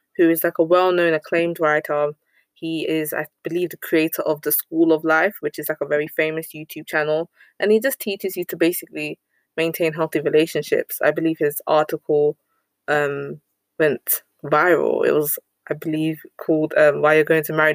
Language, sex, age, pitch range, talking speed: English, female, 20-39, 155-185 Hz, 185 wpm